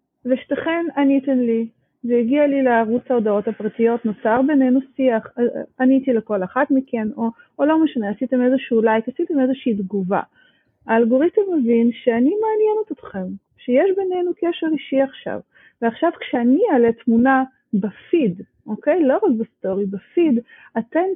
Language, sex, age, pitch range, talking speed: Hebrew, female, 30-49, 205-265 Hz, 135 wpm